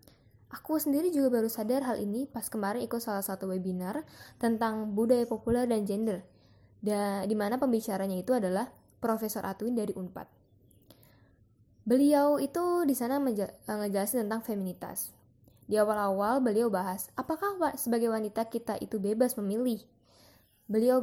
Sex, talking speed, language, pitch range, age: female, 135 wpm, English, 200-250 Hz, 10-29